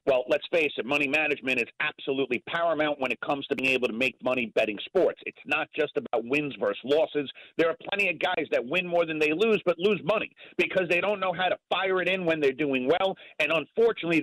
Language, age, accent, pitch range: English, 40-59, American, 135-195 Hz